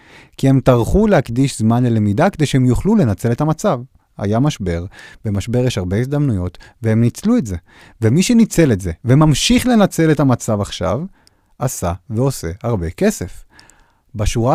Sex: male